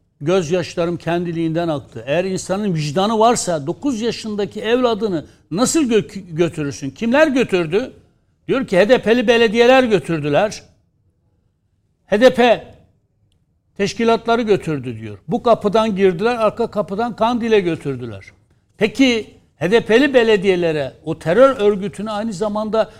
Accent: native